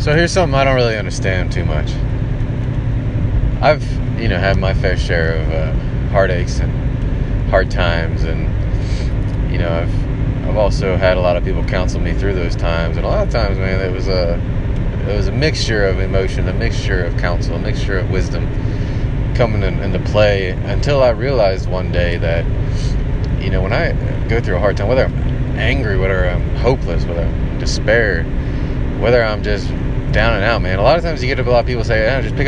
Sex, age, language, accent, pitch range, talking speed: male, 30-49, English, American, 100-125 Hz, 200 wpm